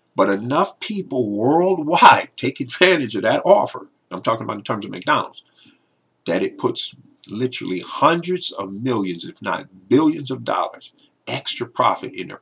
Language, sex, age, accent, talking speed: English, male, 50-69, American, 155 wpm